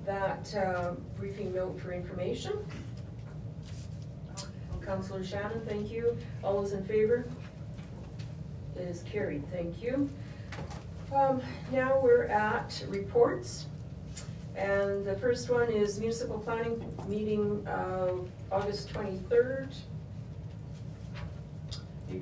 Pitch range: 170-215 Hz